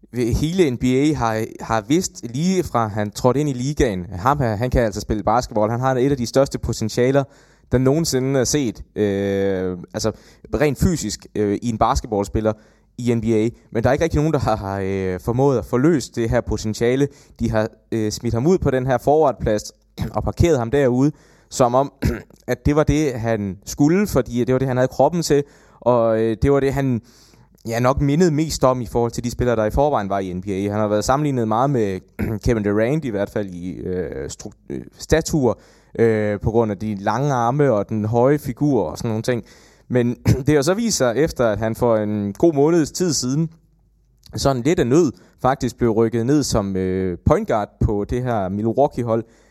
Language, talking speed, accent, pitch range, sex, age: English, 205 wpm, Danish, 110-140 Hz, male, 20-39